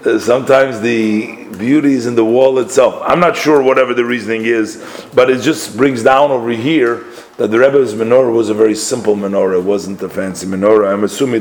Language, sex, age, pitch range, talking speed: English, male, 40-59, 110-135 Hz, 200 wpm